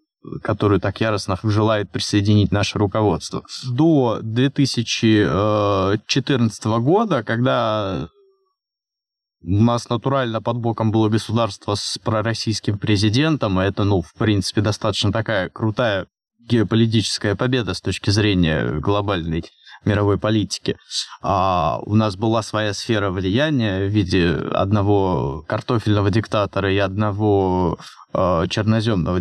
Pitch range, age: 100-120 Hz, 20-39